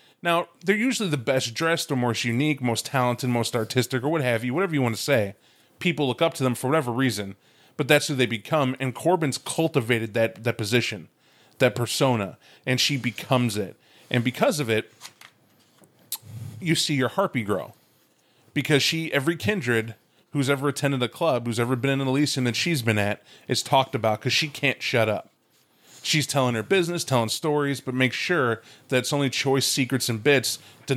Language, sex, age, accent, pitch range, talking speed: English, male, 30-49, American, 120-145 Hz, 195 wpm